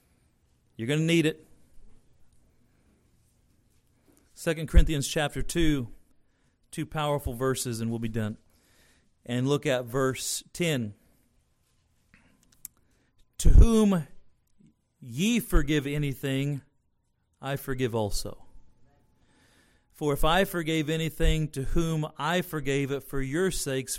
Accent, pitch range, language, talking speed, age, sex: American, 115-155 Hz, English, 105 wpm, 40-59, male